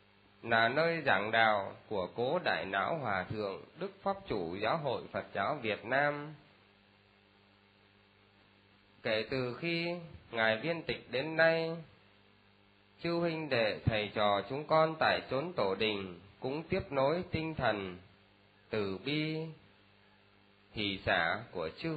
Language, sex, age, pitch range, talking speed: Vietnamese, male, 20-39, 100-160 Hz, 135 wpm